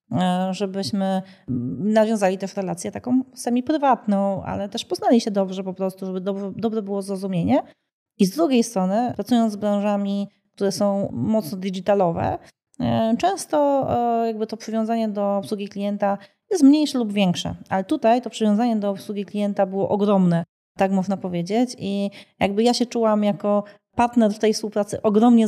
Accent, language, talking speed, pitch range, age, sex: native, Polish, 145 wpm, 195-225 Hz, 30-49, female